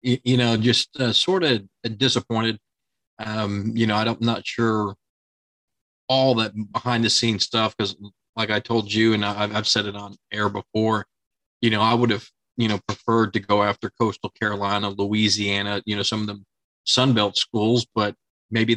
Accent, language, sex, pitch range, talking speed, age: American, English, male, 105-120 Hz, 180 wpm, 40-59